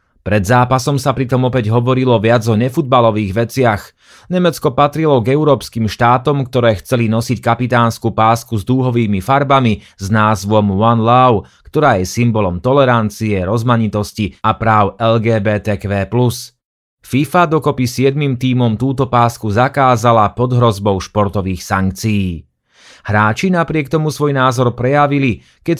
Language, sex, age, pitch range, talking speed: Slovak, male, 30-49, 105-130 Hz, 125 wpm